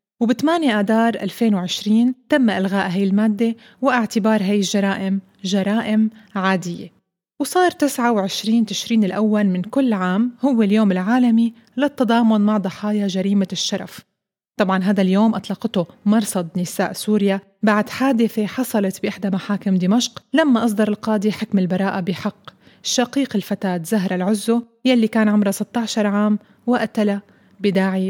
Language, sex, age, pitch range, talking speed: Arabic, female, 20-39, 195-235 Hz, 125 wpm